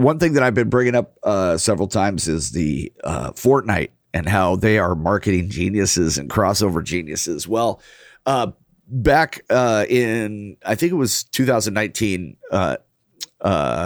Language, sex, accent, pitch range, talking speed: English, male, American, 90-125 Hz, 145 wpm